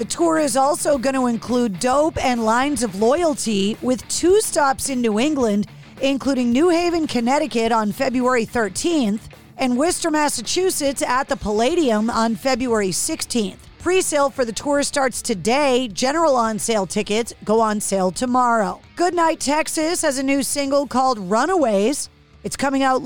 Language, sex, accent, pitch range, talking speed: English, female, American, 225-280 Hz, 150 wpm